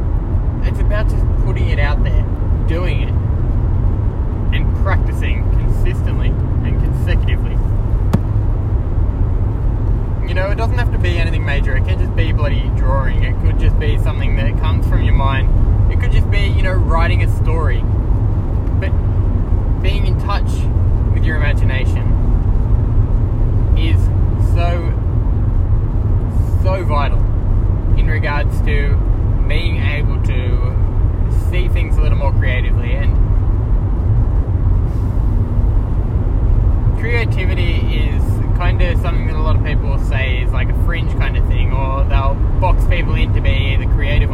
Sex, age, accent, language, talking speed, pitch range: male, 20-39, Australian, English, 135 wpm, 95-105 Hz